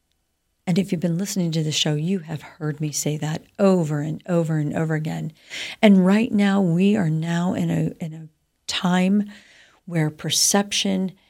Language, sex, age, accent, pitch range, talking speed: English, female, 50-69, American, 155-205 Hz, 170 wpm